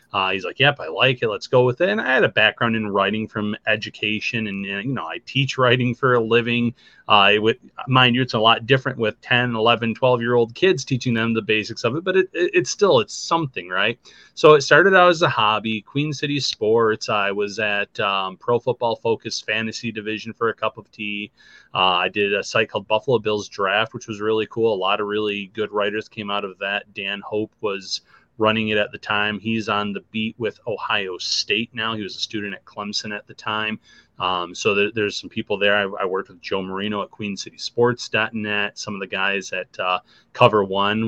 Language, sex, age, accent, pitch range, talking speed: English, male, 30-49, American, 105-120 Hz, 220 wpm